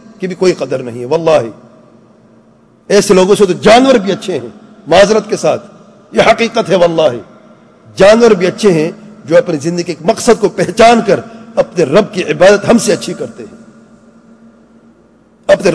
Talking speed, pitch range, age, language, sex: 170 wpm, 175-220 Hz, 50-69, English, male